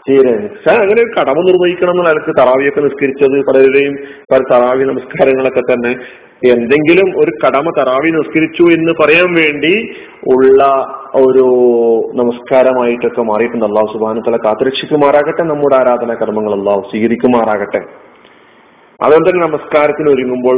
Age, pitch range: 30-49, 120-150 Hz